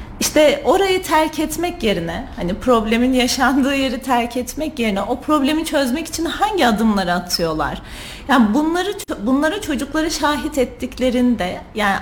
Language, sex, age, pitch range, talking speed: Turkish, female, 40-59, 200-260 Hz, 130 wpm